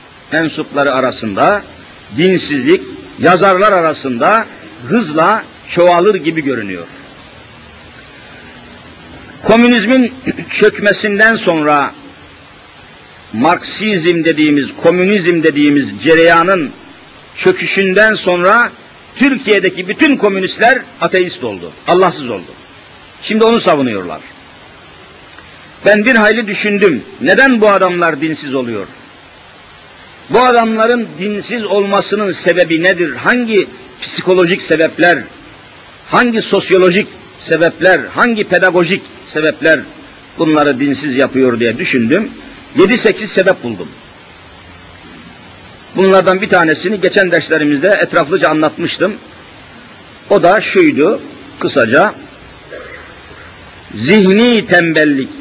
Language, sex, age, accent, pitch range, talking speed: Turkish, male, 50-69, native, 160-215 Hz, 80 wpm